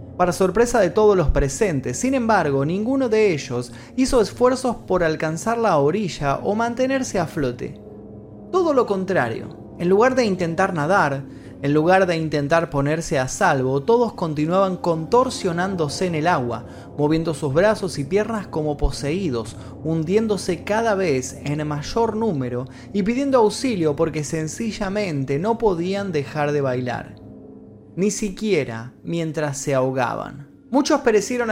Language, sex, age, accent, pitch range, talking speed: Spanish, male, 20-39, Argentinian, 145-220 Hz, 135 wpm